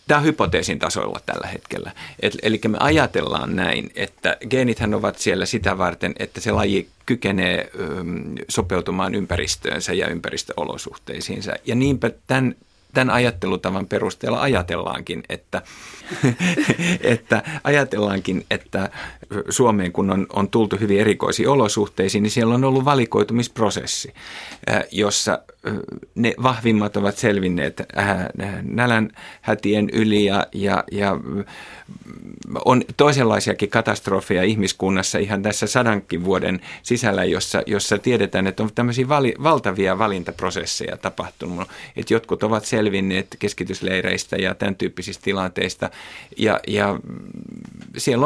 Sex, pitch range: male, 95-120 Hz